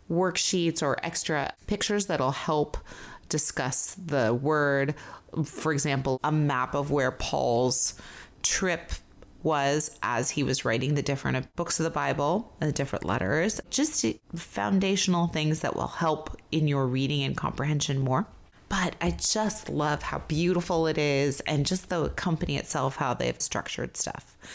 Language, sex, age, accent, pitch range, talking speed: English, female, 30-49, American, 140-180 Hz, 150 wpm